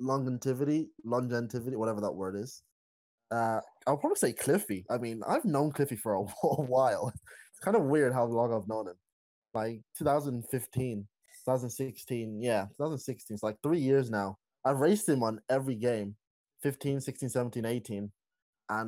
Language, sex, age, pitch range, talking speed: English, male, 20-39, 110-135 Hz, 145 wpm